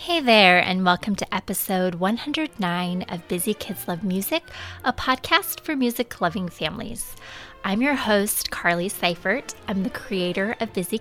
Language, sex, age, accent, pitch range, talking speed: English, female, 20-39, American, 185-240 Hz, 145 wpm